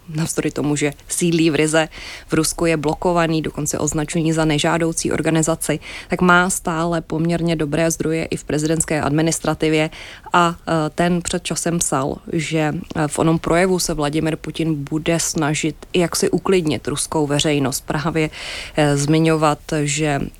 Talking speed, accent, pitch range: 140 wpm, native, 145-165 Hz